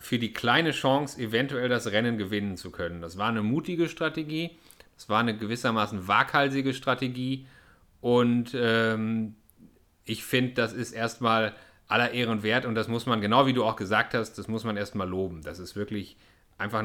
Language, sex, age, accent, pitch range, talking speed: German, male, 30-49, German, 110-140 Hz, 180 wpm